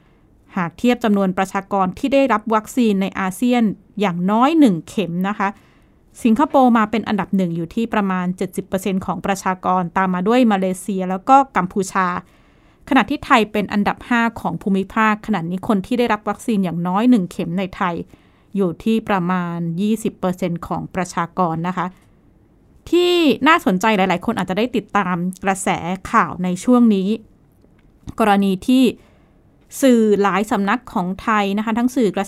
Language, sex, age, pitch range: Thai, female, 20-39, 190-230 Hz